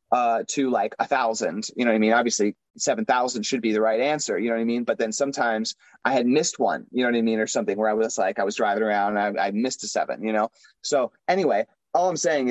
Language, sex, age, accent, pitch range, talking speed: English, male, 30-49, American, 120-145 Hz, 275 wpm